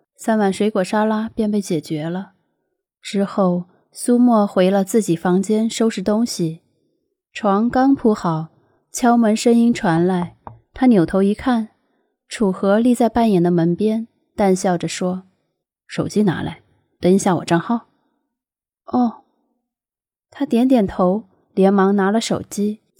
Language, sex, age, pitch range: Chinese, female, 20-39, 180-235 Hz